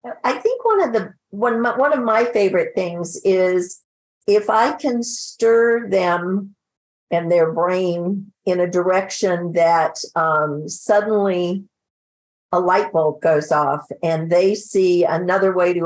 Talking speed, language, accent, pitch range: 140 wpm, English, American, 170-210 Hz